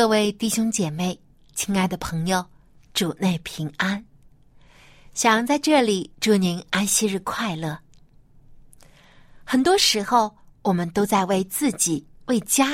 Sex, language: female, Chinese